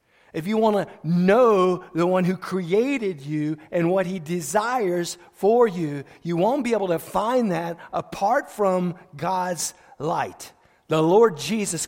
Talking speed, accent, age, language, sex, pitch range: 150 wpm, American, 40-59, English, male, 160-220 Hz